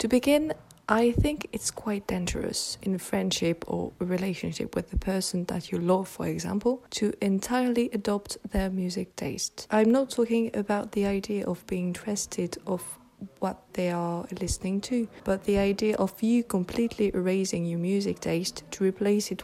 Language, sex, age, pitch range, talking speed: French, female, 20-39, 185-230 Hz, 165 wpm